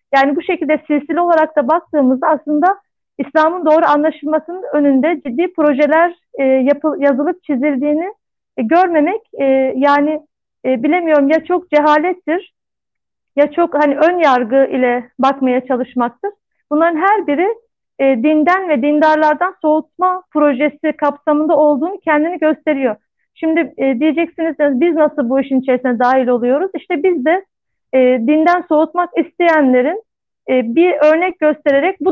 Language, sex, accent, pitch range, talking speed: Turkish, female, native, 275-325 Hz, 135 wpm